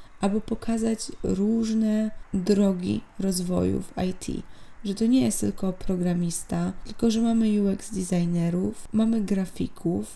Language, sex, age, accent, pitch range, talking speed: Polish, female, 20-39, native, 175-215 Hz, 120 wpm